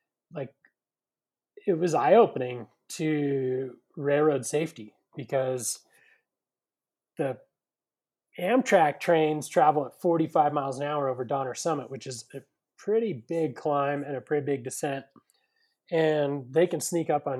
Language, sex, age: English, male, 30-49